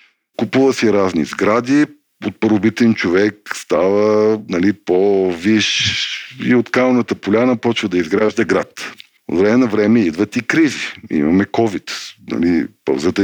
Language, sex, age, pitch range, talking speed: Bulgarian, male, 50-69, 100-135 Hz, 135 wpm